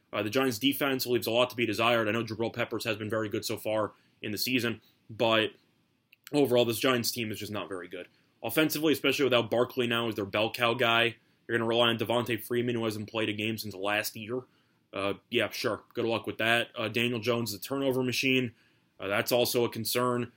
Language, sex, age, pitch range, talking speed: English, male, 20-39, 110-130 Hz, 225 wpm